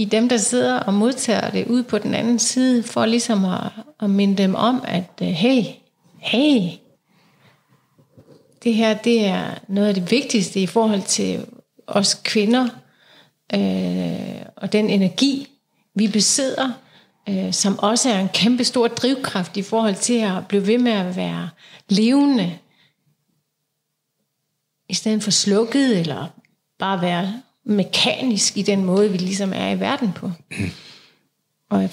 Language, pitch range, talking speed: Danish, 190-225 Hz, 145 wpm